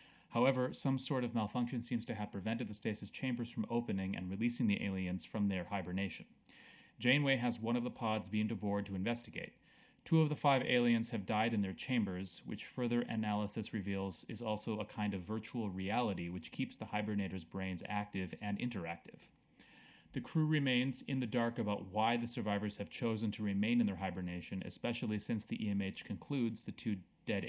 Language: English